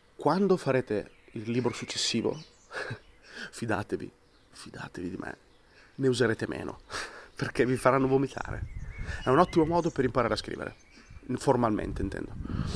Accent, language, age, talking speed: native, Italian, 30-49, 120 wpm